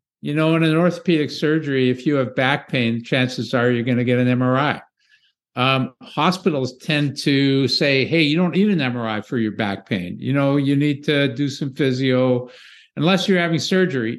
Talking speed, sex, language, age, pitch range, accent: 195 wpm, male, English, 60-79, 125-155 Hz, American